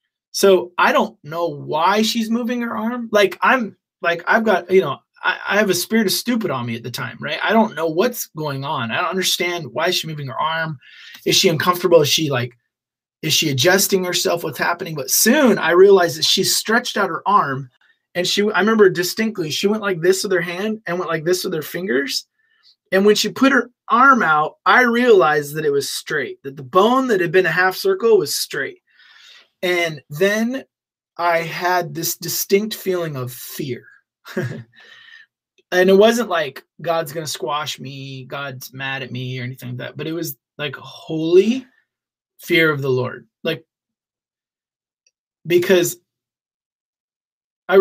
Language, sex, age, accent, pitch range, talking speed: English, male, 20-39, American, 160-215 Hz, 185 wpm